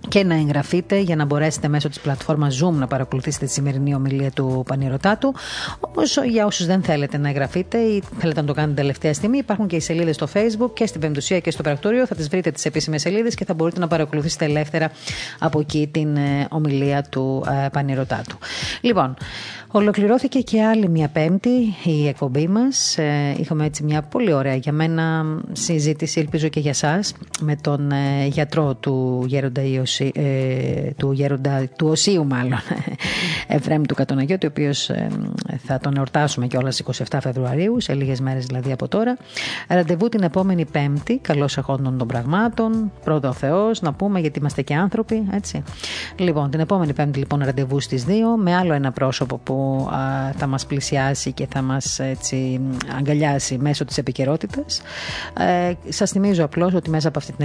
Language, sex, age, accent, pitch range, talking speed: Greek, female, 30-49, native, 135-175 Hz, 170 wpm